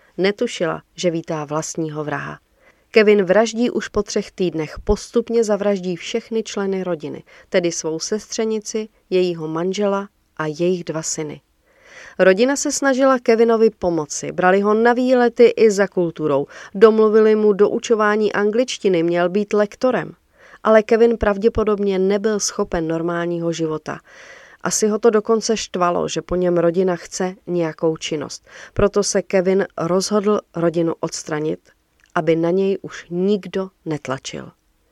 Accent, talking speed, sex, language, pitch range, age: native, 130 wpm, female, Czech, 170-215 Hz, 30-49